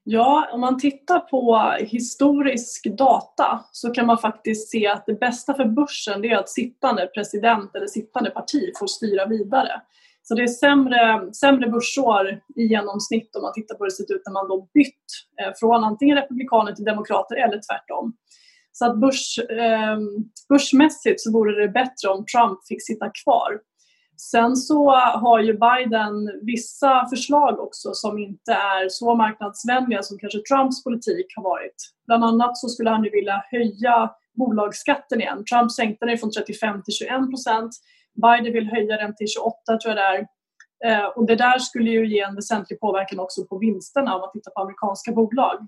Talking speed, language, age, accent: 175 wpm, Swedish, 20-39, native